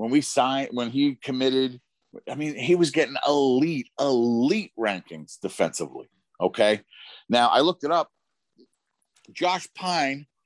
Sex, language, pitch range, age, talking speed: male, English, 105-135 Hz, 40-59, 130 wpm